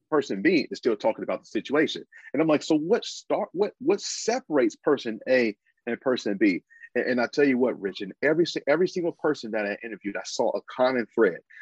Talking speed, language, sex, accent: 215 wpm, English, male, American